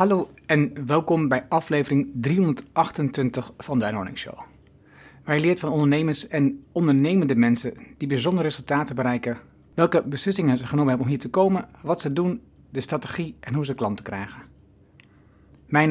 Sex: male